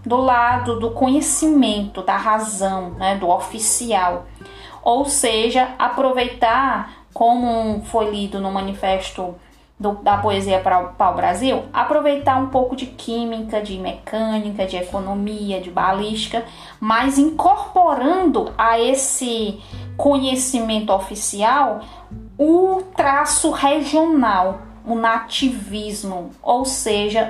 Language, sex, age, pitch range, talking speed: Portuguese, female, 20-39, 205-290 Hz, 105 wpm